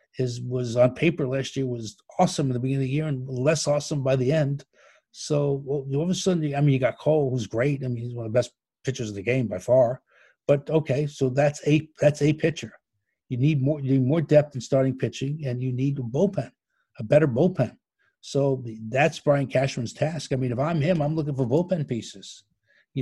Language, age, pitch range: English, 60-79, 120-150 Hz